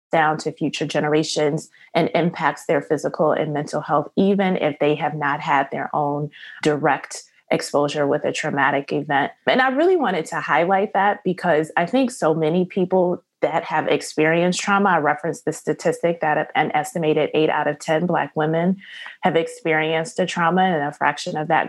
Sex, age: female, 20-39